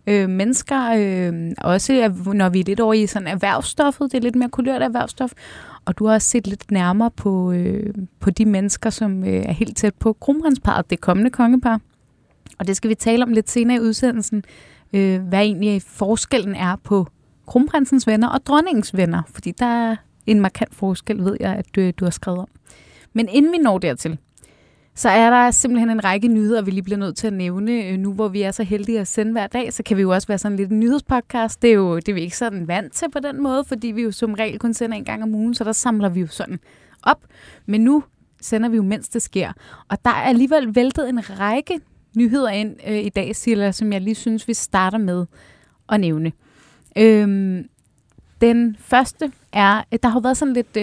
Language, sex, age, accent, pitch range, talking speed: Danish, female, 20-39, native, 195-235 Hz, 215 wpm